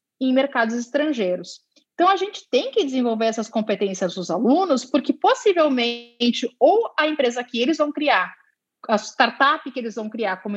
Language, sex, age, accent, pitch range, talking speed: Portuguese, female, 30-49, Brazilian, 225-310 Hz, 165 wpm